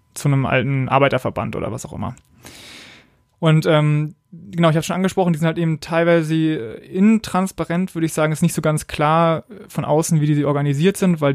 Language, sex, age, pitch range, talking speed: German, male, 20-39, 140-165 Hz, 195 wpm